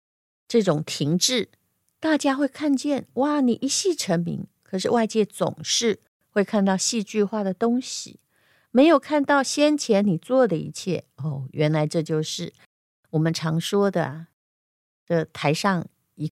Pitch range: 170-250 Hz